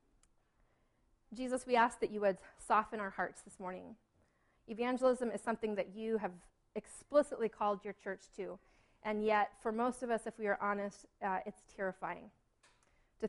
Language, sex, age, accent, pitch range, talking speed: English, female, 30-49, American, 200-230 Hz, 165 wpm